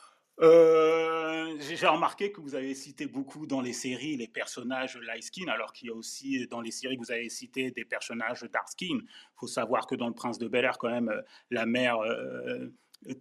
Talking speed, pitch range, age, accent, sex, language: 215 wpm, 120-155 Hz, 30-49, French, male, French